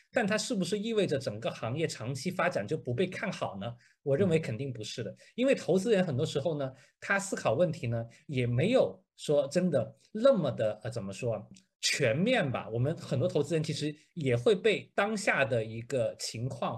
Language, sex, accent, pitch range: Chinese, male, native, 125-190 Hz